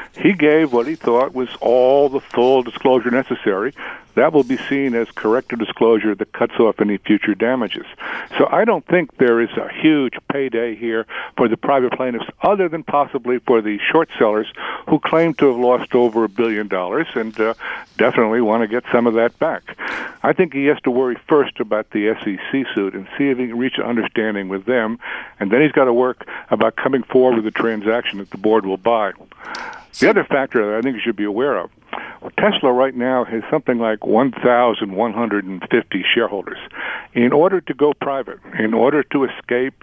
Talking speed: 195 wpm